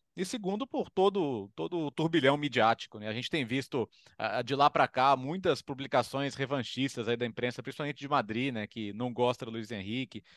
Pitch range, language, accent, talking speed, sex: 120-155 Hz, Portuguese, Brazilian, 190 wpm, male